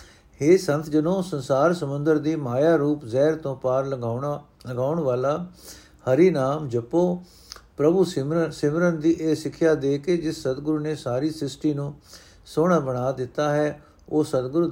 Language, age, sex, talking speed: Punjabi, 60-79, male, 145 wpm